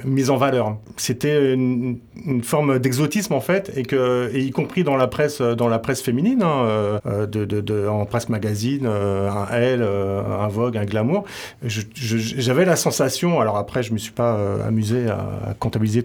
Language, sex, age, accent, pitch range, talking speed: French, male, 30-49, French, 110-145 Hz, 200 wpm